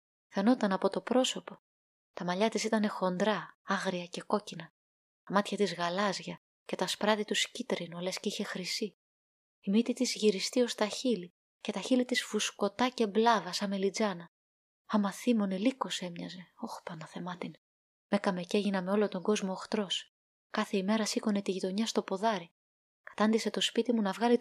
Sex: female